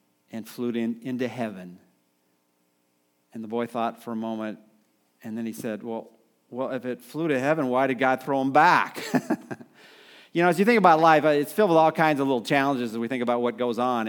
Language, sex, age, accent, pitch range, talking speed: English, male, 40-59, American, 115-145 Hz, 215 wpm